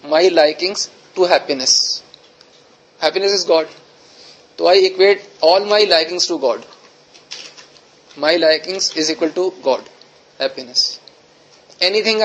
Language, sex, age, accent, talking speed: Hindi, male, 20-39, native, 120 wpm